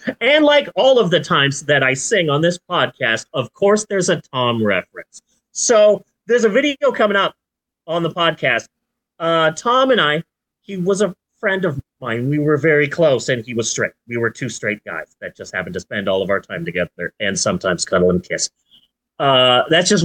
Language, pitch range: English, 140-215 Hz